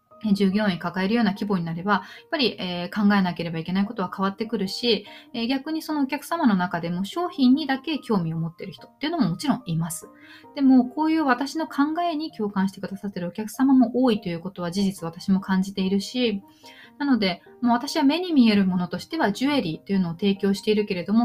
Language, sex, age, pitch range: Japanese, female, 20-39, 185-255 Hz